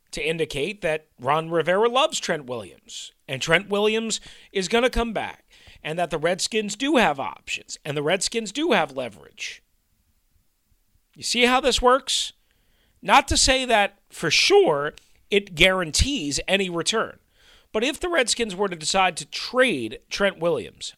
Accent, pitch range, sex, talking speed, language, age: American, 155-230 Hz, male, 155 wpm, English, 40-59